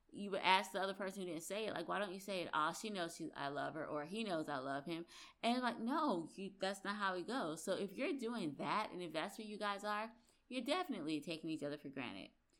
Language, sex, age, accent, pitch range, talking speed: English, female, 20-39, American, 160-205 Hz, 275 wpm